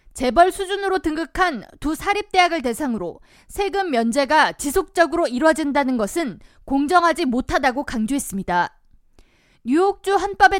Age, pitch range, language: 20-39, 260-355 Hz, Korean